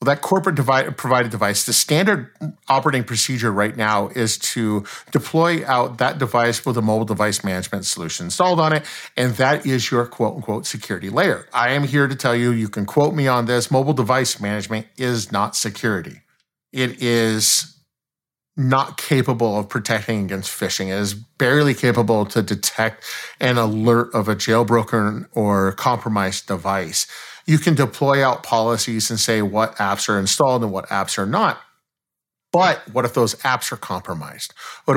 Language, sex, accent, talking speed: English, male, American, 165 wpm